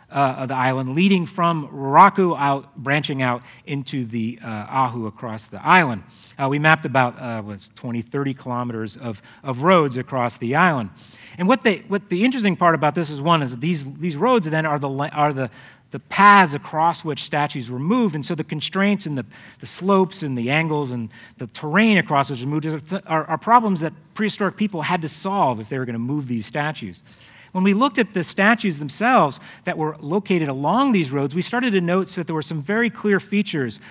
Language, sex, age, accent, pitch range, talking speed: English, male, 30-49, American, 130-185 Hz, 215 wpm